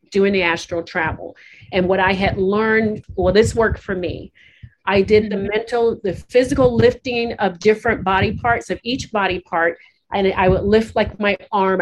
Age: 40-59